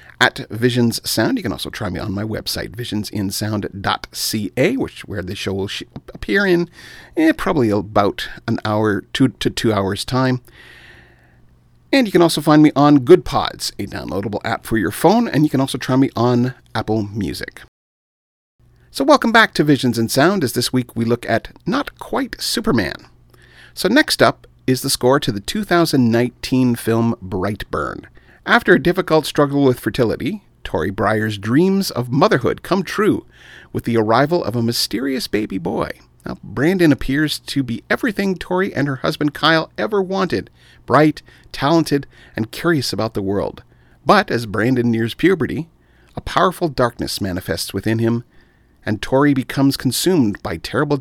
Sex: male